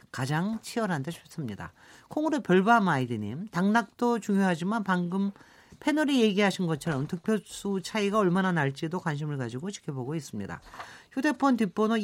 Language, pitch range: Korean, 155-225 Hz